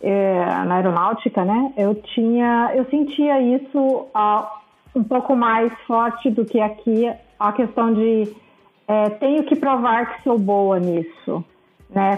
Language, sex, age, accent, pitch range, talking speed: Portuguese, female, 30-49, Brazilian, 210-260 Hz, 140 wpm